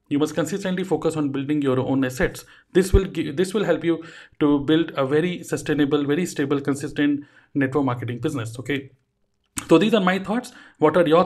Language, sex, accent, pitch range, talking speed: Hindi, male, native, 140-180 Hz, 190 wpm